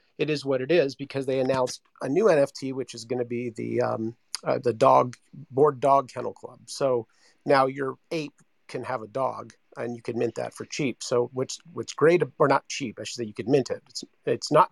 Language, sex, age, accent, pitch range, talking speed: English, male, 40-59, American, 120-140 Hz, 230 wpm